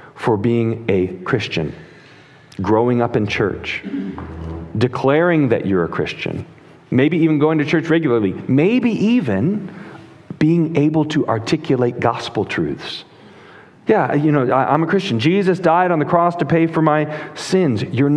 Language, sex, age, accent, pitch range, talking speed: English, male, 40-59, American, 120-160 Hz, 145 wpm